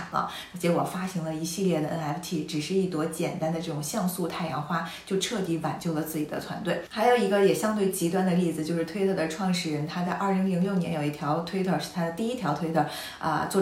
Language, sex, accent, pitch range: Chinese, female, native, 160-195 Hz